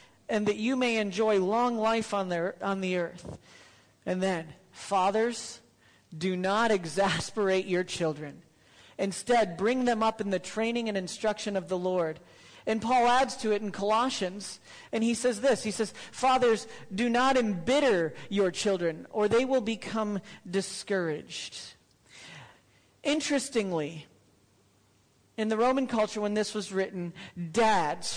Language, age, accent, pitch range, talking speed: English, 40-59, American, 185-245 Hz, 140 wpm